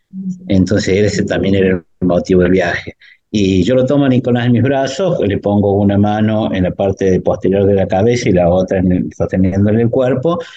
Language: Spanish